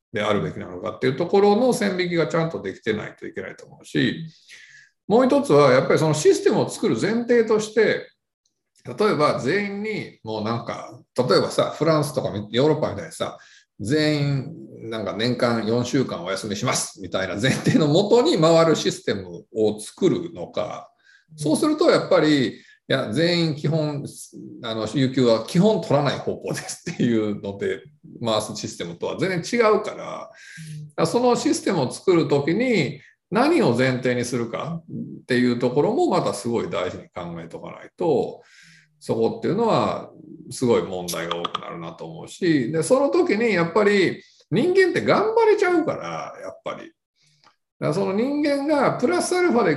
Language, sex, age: Japanese, male, 50-69